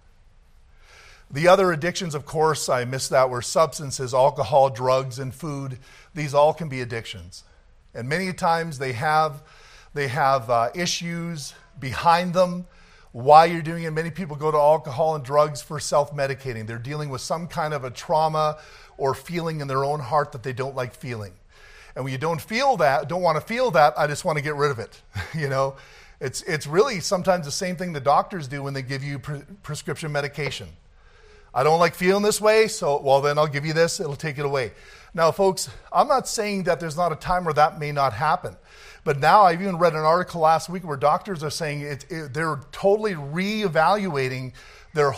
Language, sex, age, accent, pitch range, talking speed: English, male, 40-59, American, 140-180 Hz, 200 wpm